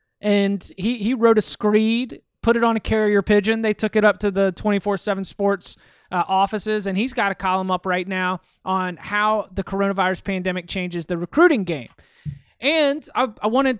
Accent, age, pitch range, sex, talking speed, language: American, 30-49, 195-230 Hz, male, 185 wpm, English